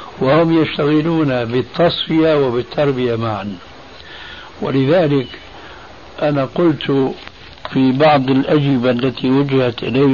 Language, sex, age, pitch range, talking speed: Arabic, male, 60-79, 120-150 Hz, 85 wpm